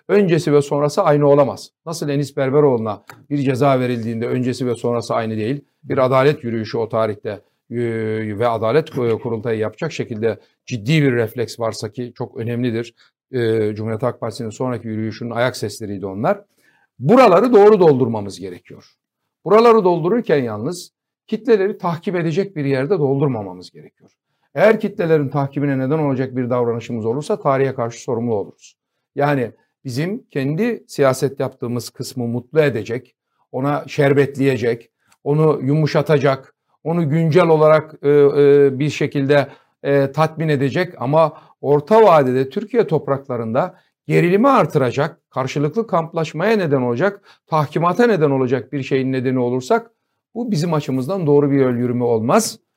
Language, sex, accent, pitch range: Turkish, male, native, 120-160 Hz